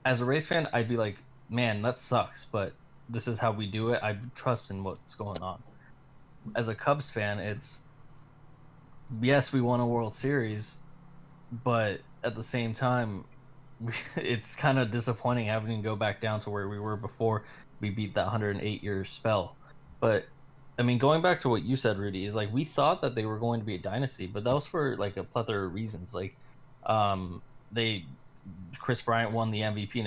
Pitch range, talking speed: 105-130 Hz, 195 wpm